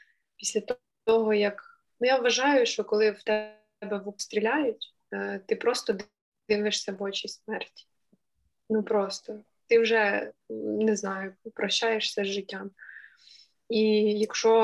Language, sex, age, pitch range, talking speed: Ukrainian, female, 20-39, 200-225 Hz, 120 wpm